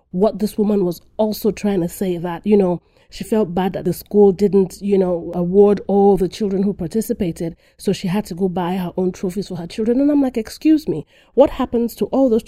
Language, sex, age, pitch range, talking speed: English, female, 30-49, 185-235 Hz, 230 wpm